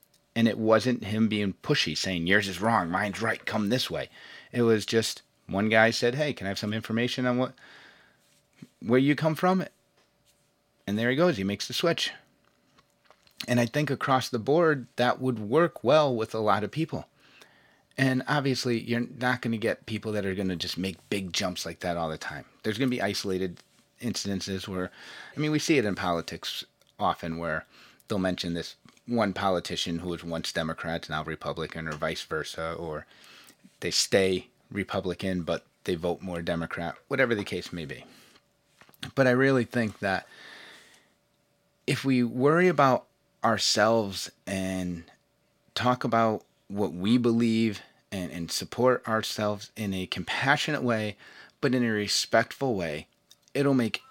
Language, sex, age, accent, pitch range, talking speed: English, male, 30-49, American, 95-125 Hz, 170 wpm